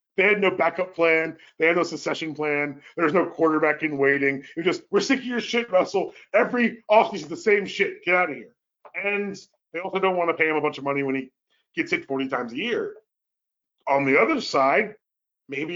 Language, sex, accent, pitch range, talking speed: English, male, American, 150-200 Hz, 220 wpm